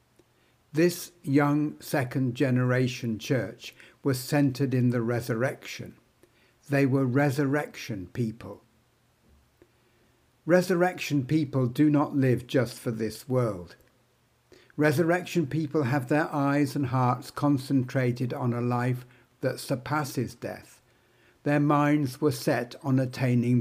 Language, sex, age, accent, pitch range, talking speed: English, male, 60-79, British, 120-145 Hz, 105 wpm